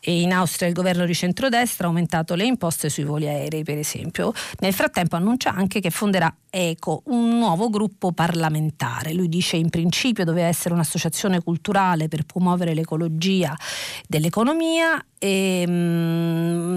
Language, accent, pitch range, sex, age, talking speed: Italian, native, 165-195 Hz, female, 40-59, 145 wpm